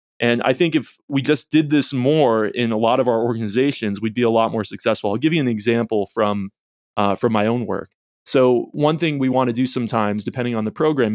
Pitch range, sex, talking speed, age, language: 110-140 Hz, male, 235 wpm, 20-39, English